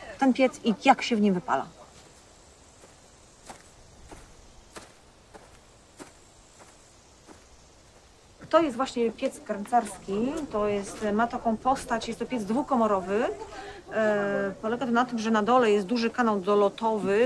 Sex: female